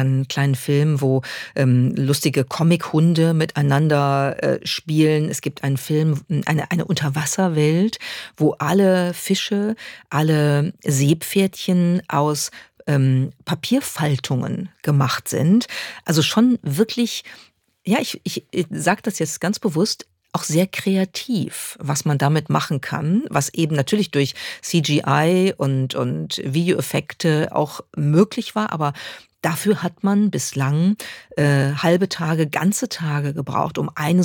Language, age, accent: German, 50-69, German